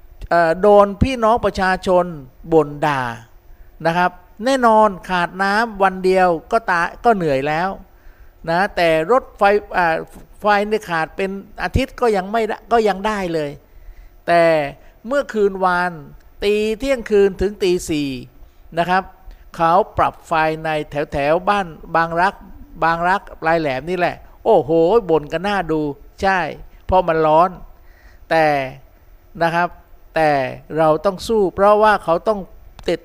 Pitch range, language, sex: 160-205 Hz, Thai, male